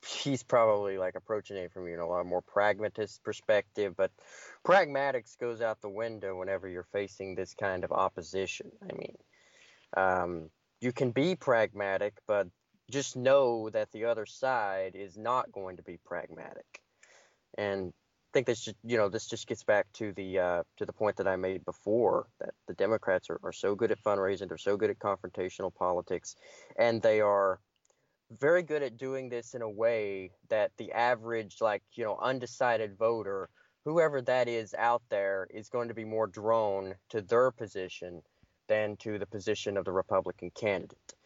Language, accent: English, American